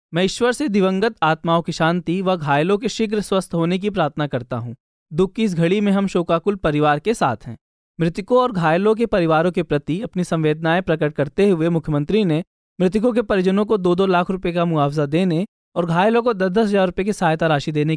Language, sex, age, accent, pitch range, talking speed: Hindi, male, 20-39, native, 160-205 Hz, 215 wpm